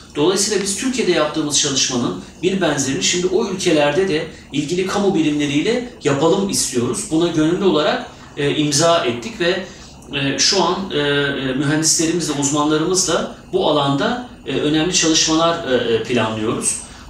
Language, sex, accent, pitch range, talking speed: Turkish, male, native, 130-180 Hz, 110 wpm